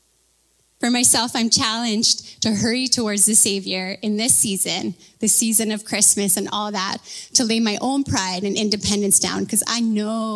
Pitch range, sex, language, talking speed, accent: 195-230 Hz, female, English, 175 wpm, American